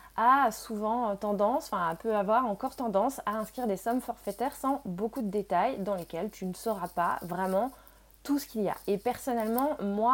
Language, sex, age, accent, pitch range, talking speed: French, female, 20-39, French, 190-250 Hz, 190 wpm